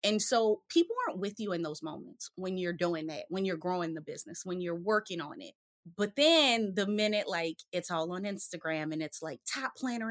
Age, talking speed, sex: 20-39, 220 wpm, female